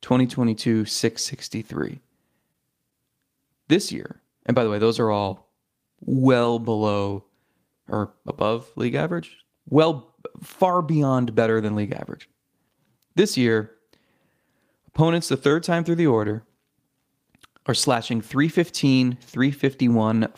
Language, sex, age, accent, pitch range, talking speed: English, male, 30-49, American, 110-140 Hz, 110 wpm